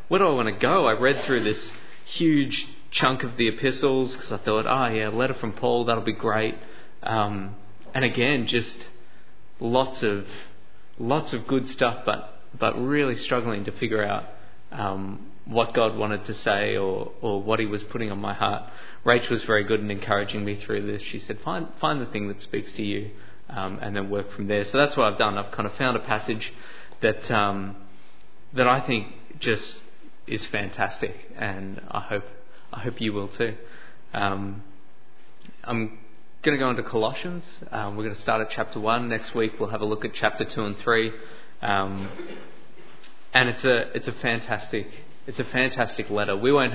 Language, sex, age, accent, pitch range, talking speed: English, male, 20-39, Australian, 105-120 Hz, 190 wpm